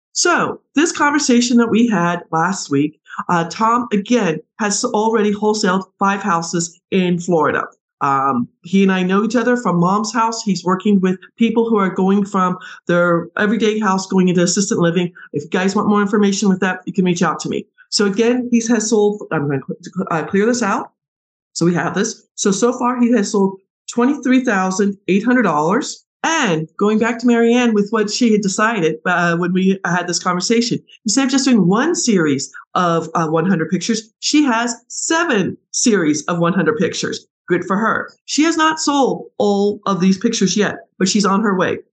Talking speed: 190 wpm